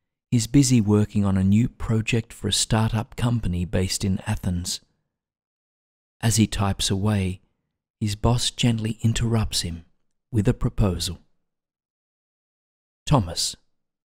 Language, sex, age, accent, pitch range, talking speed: English, male, 40-59, Australian, 95-110 Hz, 115 wpm